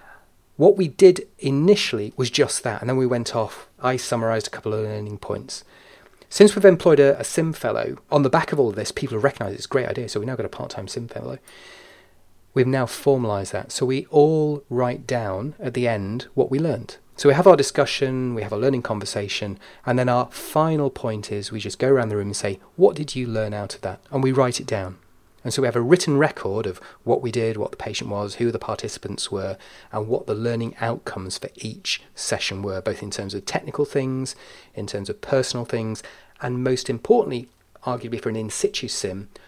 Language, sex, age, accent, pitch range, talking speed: English, male, 30-49, British, 105-140 Hz, 225 wpm